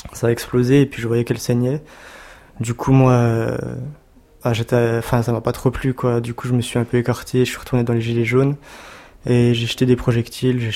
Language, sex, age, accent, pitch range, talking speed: French, male, 20-39, French, 115-125 Hz, 240 wpm